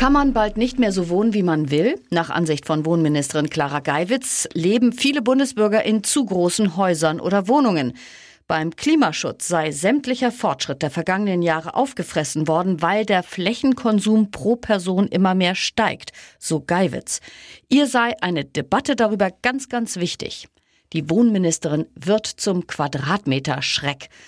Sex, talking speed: female, 145 wpm